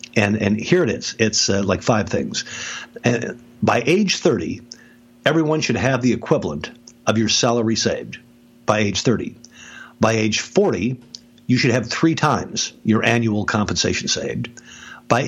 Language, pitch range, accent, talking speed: English, 110-130 Hz, American, 155 wpm